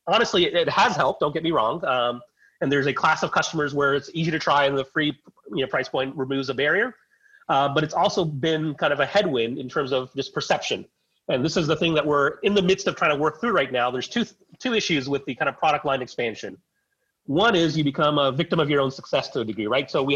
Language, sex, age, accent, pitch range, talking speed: English, male, 30-49, American, 145-195 Hz, 260 wpm